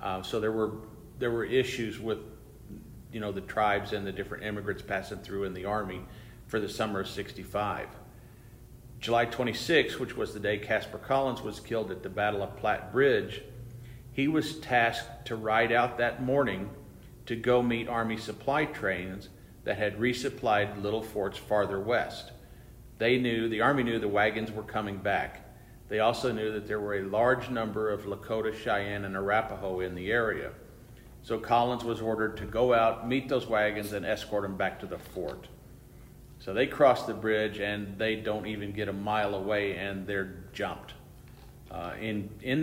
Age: 50-69